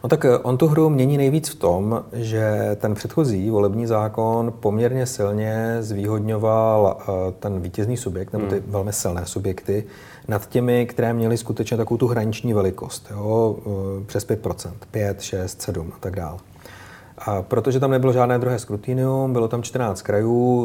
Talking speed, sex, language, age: 155 wpm, male, Czech, 40-59